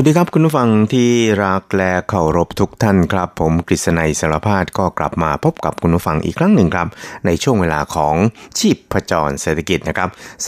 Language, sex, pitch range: Thai, male, 80-95 Hz